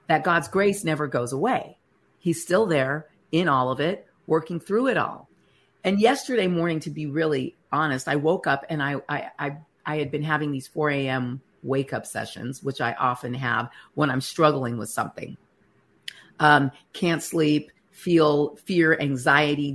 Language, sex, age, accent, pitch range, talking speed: English, female, 50-69, American, 135-165 Hz, 170 wpm